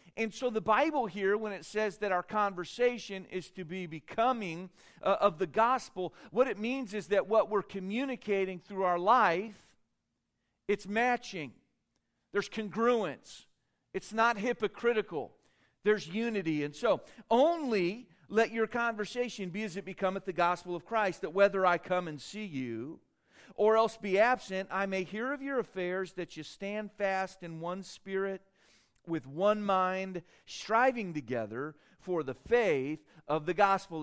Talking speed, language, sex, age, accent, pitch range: 155 wpm, English, male, 40-59, American, 155-215 Hz